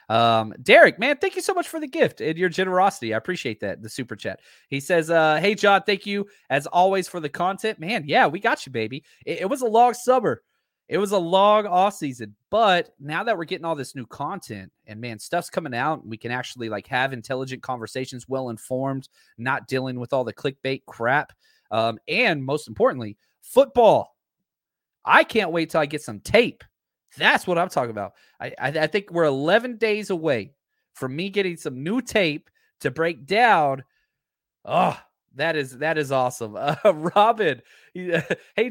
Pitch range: 130-195 Hz